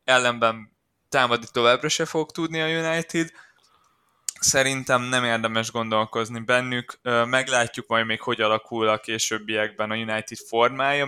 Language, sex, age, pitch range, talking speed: Hungarian, male, 20-39, 105-130 Hz, 120 wpm